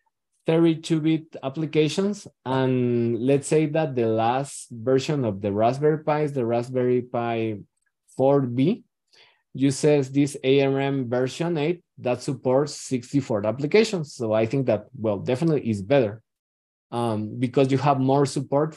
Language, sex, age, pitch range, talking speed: English, male, 20-39, 120-150 Hz, 135 wpm